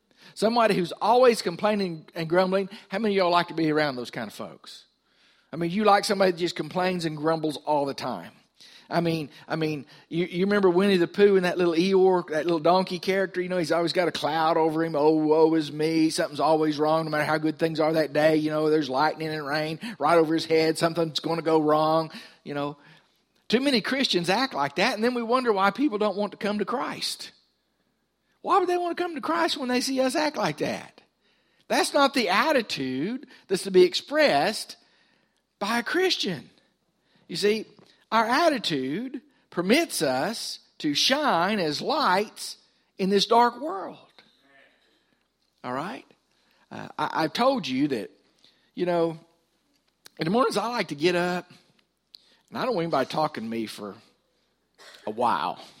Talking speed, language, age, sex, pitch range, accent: 190 wpm, English, 50-69, male, 160-225 Hz, American